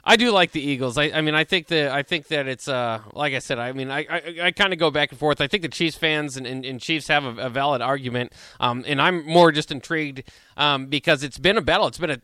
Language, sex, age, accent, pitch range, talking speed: English, male, 20-39, American, 140-165 Hz, 285 wpm